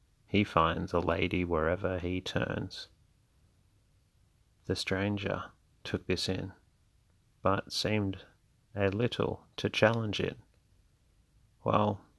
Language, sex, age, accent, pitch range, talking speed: English, male, 30-49, Australian, 90-100 Hz, 100 wpm